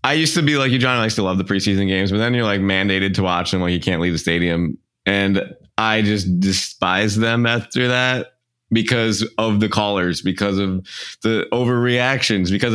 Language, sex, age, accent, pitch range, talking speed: English, male, 20-39, American, 95-120 Hz, 200 wpm